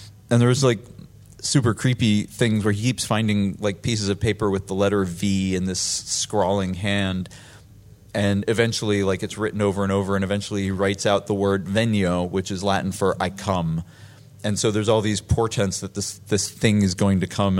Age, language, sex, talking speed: 30-49, English, male, 200 wpm